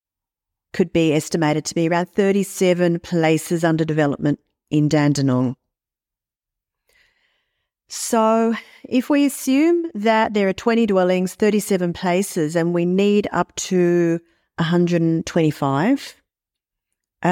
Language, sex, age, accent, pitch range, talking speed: English, female, 40-59, Australian, 160-195 Hz, 100 wpm